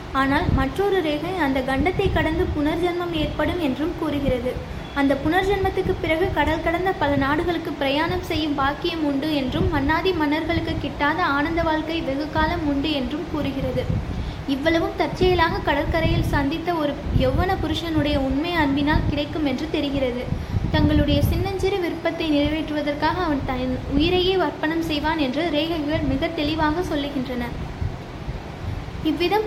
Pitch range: 290-345 Hz